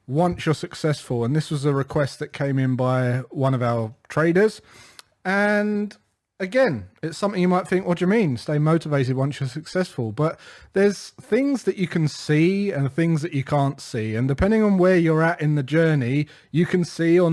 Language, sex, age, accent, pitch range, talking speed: English, male, 30-49, British, 140-175 Hz, 200 wpm